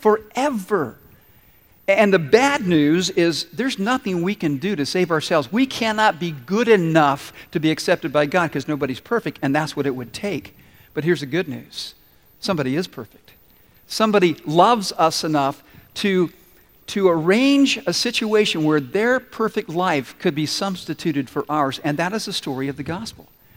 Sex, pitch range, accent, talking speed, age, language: male, 155-210 Hz, American, 170 wpm, 50-69, English